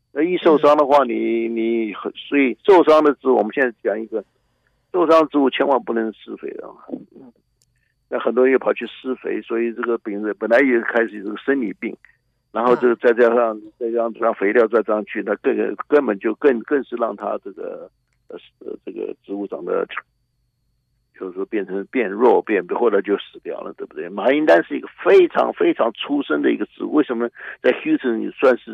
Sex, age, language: male, 60-79, Chinese